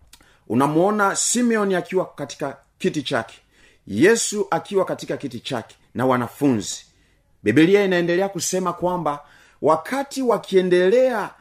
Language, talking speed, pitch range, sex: Swahili, 100 wpm, 120-180 Hz, male